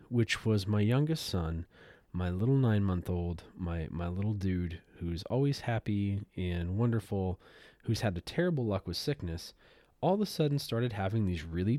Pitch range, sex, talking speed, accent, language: 95-125 Hz, male, 165 wpm, American, English